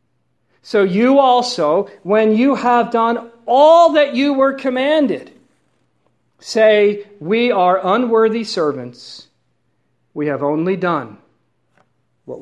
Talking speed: 105 wpm